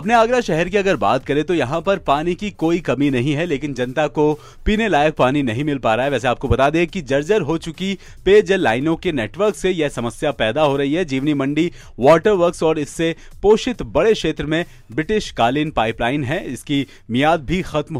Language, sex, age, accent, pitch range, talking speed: Hindi, male, 40-59, native, 130-170 Hz, 215 wpm